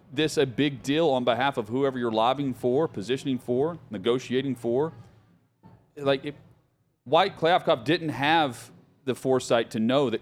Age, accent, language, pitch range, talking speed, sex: 40-59, American, English, 120-150 Hz, 155 wpm, male